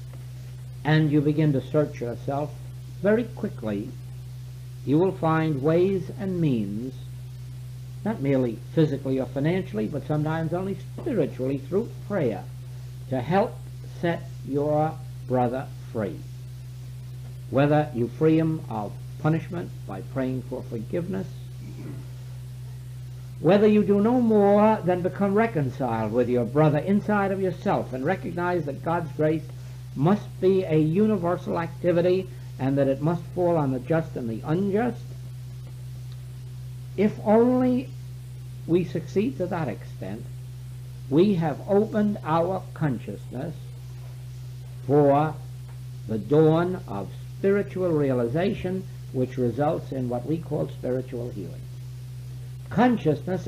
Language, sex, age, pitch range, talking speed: English, male, 60-79, 125-165 Hz, 115 wpm